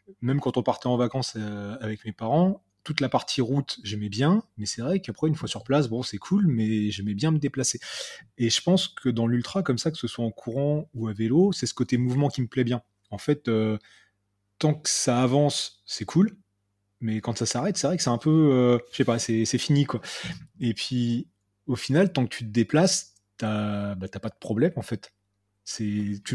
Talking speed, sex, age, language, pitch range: 230 wpm, male, 30-49, French, 110-135 Hz